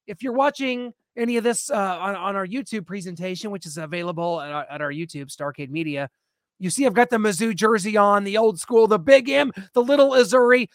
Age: 30-49